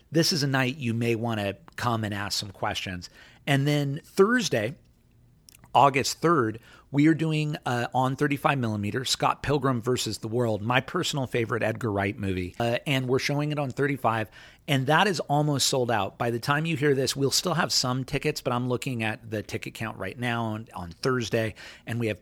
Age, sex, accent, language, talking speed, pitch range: 40-59, male, American, English, 200 wpm, 105-130 Hz